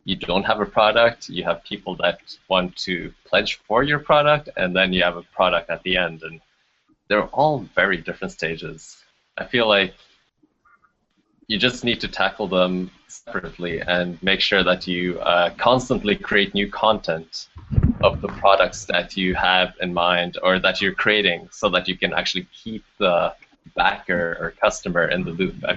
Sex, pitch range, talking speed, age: male, 85-95 Hz, 175 wpm, 20-39